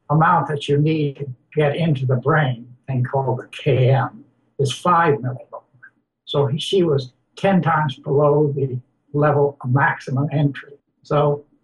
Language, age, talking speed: English, 60-79, 150 wpm